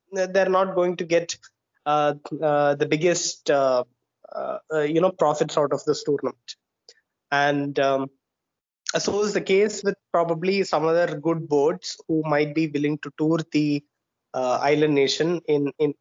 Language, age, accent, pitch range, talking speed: English, 20-39, Indian, 150-195 Hz, 155 wpm